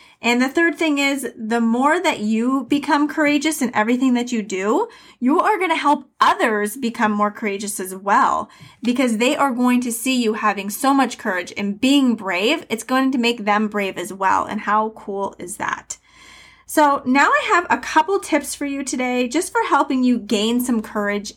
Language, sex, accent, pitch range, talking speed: English, female, American, 210-280 Hz, 200 wpm